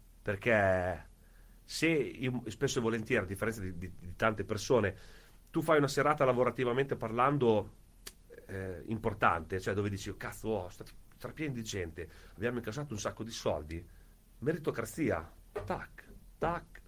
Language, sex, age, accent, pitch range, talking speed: Italian, male, 40-59, native, 100-150 Hz, 140 wpm